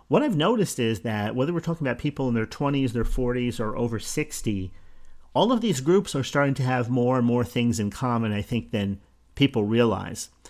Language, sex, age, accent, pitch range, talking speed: English, male, 40-59, American, 115-140 Hz, 210 wpm